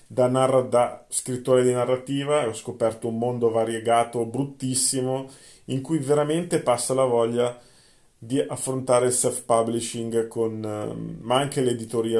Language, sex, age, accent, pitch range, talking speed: Italian, male, 40-59, native, 115-130 Hz, 135 wpm